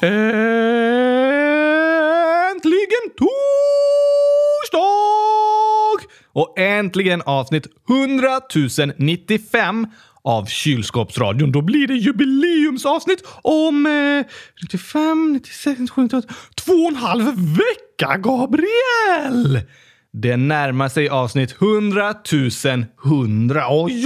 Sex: male